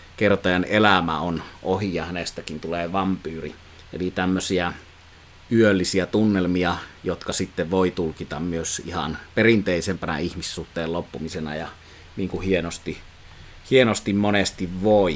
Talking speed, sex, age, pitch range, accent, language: 110 wpm, male, 30-49, 90-105 Hz, native, Finnish